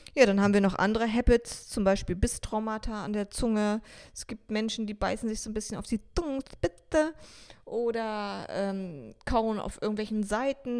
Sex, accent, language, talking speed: female, German, German, 180 wpm